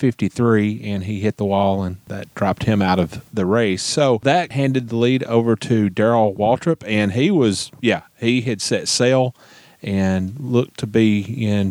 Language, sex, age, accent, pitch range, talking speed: English, male, 30-49, American, 105-140 Hz, 185 wpm